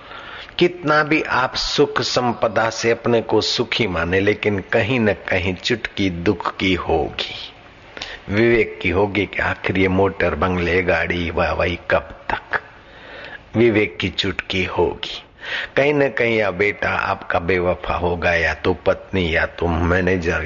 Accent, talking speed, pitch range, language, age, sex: native, 140 wpm, 90-115 Hz, Hindi, 60-79, male